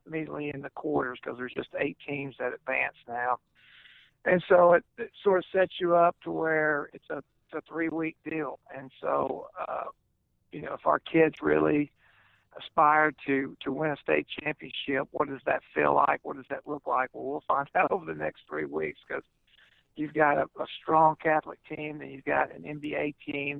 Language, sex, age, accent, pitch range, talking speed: English, male, 50-69, American, 140-165 Hz, 195 wpm